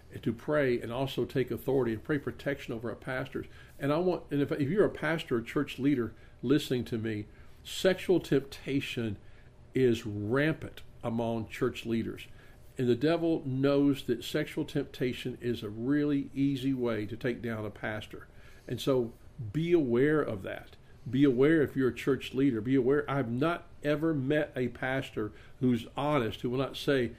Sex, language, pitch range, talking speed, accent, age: male, English, 115-140 Hz, 170 wpm, American, 50-69